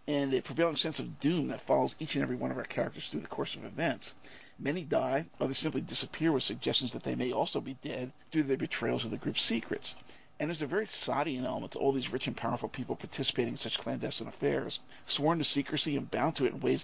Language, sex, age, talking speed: English, male, 50-69, 240 wpm